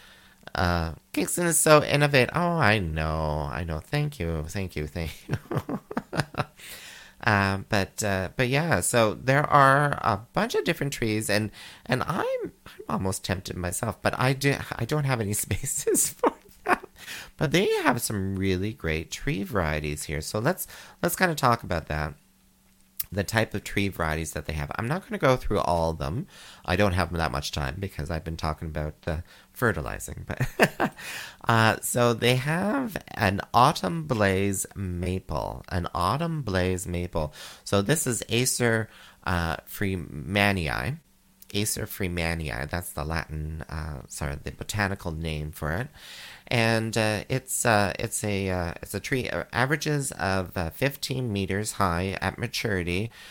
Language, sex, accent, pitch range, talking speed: English, male, American, 85-115 Hz, 160 wpm